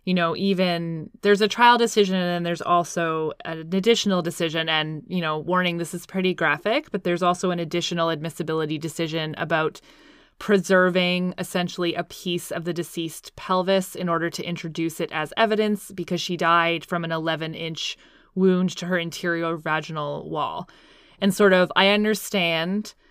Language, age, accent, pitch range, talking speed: English, 20-39, American, 165-190 Hz, 160 wpm